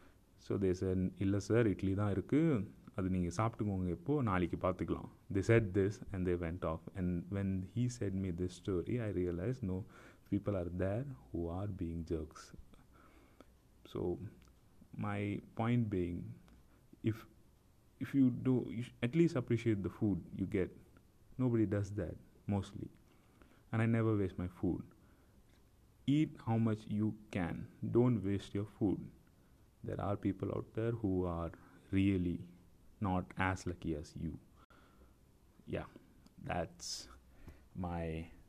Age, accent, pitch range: 30-49, Indian, 90-110 Hz